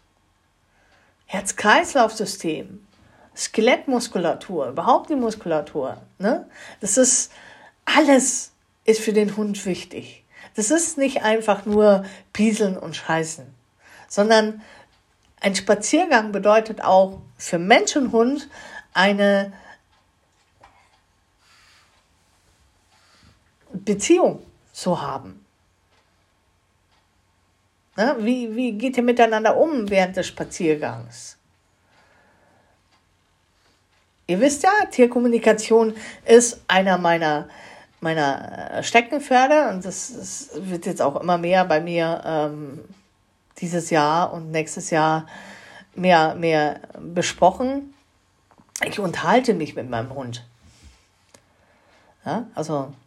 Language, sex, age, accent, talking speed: German, female, 50-69, German, 90 wpm